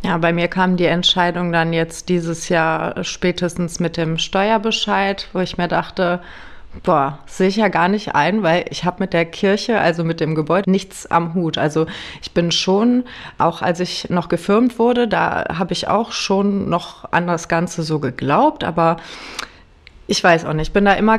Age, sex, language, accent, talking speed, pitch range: 30-49, female, German, German, 195 wpm, 165-195 Hz